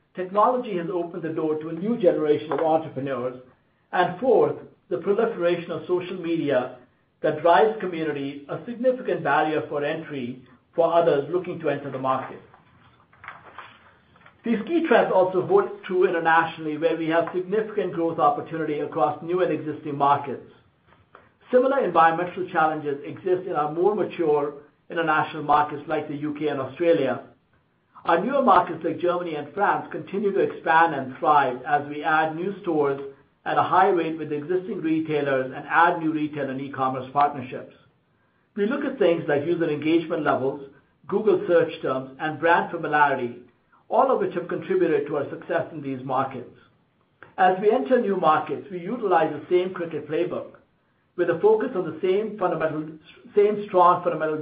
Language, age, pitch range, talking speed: English, 60-79, 145-180 Hz, 160 wpm